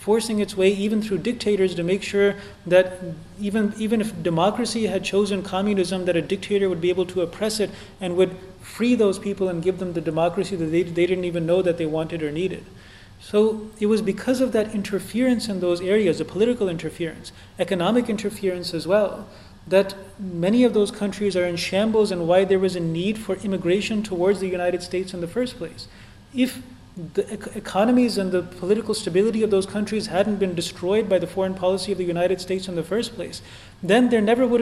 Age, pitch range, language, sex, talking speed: 30-49, 180-215 Hz, English, male, 205 wpm